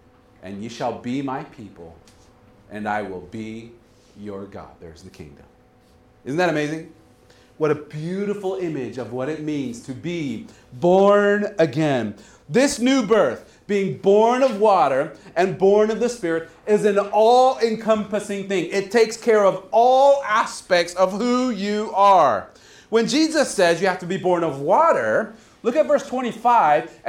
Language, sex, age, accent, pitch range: Japanese, male, 40-59, American, 150-215 Hz